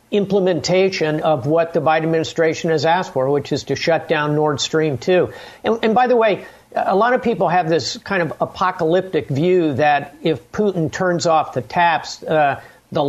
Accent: American